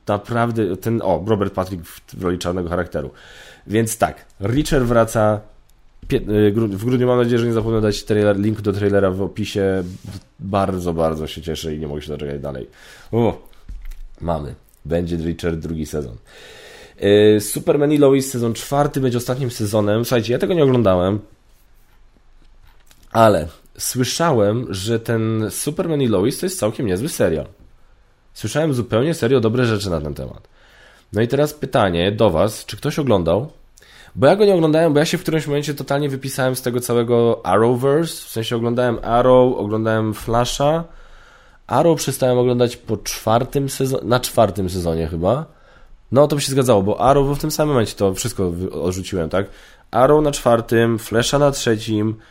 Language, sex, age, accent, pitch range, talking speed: Polish, male, 20-39, native, 100-130 Hz, 155 wpm